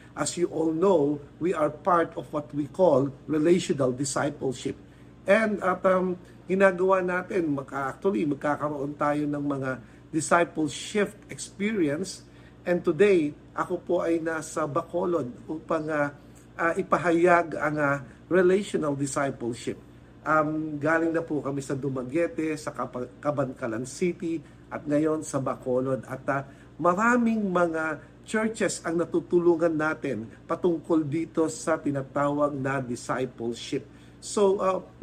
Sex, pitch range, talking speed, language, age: male, 140-175 Hz, 120 wpm, English, 50-69